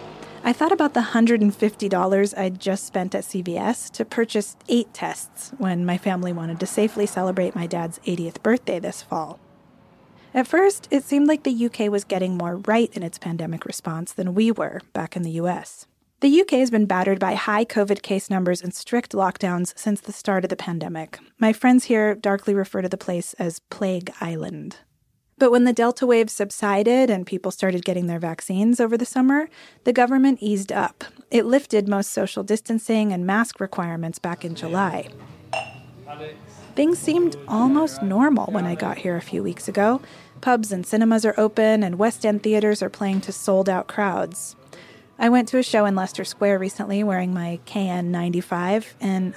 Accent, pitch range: American, 180-230 Hz